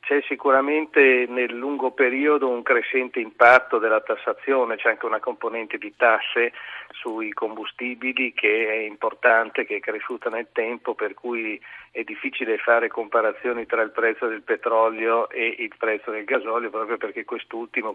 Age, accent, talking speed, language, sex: 40-59, native, 150 wpm, Italian, male